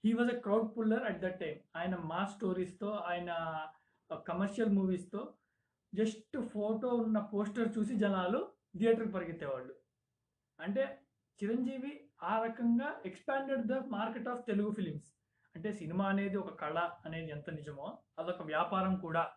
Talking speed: 130 wpm